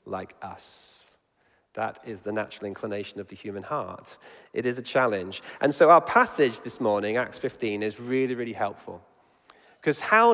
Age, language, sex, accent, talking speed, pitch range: 40-59, English, male, British, 170 wpm, 125-175 Hz